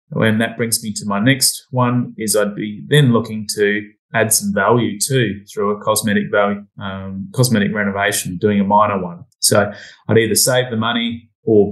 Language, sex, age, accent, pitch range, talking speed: English, male, 30-49, Australian, 105-125 Hz, 185 wpm